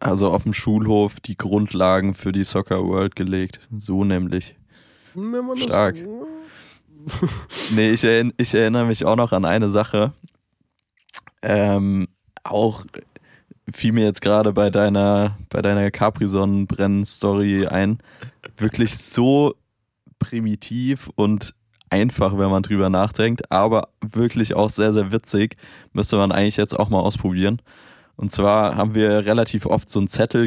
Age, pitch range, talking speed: 20-39, 100-115 Hz, 135 wpm